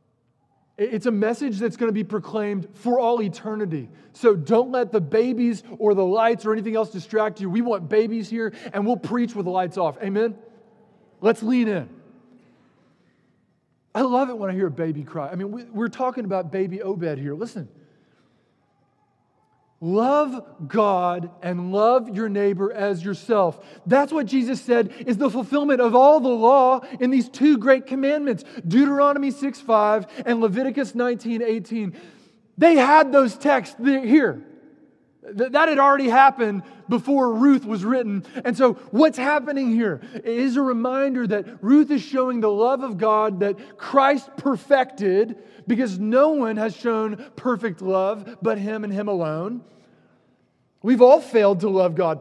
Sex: male